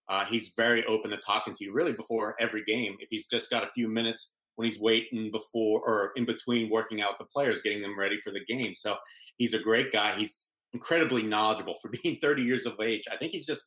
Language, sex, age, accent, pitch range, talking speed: English, male, 30-49, American, 110-120 Hz, 235 wpm